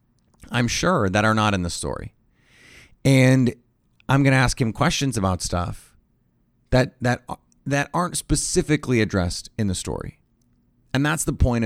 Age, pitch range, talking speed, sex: 30-49, 100-125 Hz, 155 wpm, male